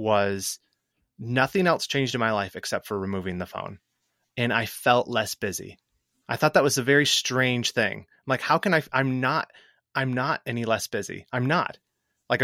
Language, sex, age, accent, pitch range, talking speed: English, male, 30-49, American, 105-130 Hz, 195 wpm